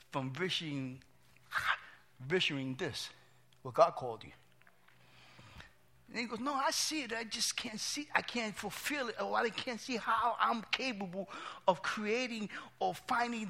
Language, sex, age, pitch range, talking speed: English, male, 50-69, 145-225 Hz, 145 wpm